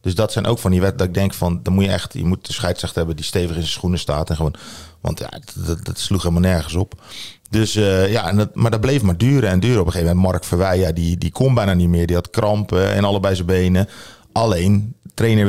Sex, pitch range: male, 90-105 Hz